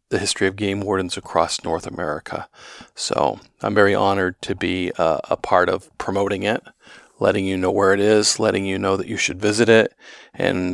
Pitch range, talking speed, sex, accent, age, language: 100-110 Hz, 195 wpm, male, American, 40-59, English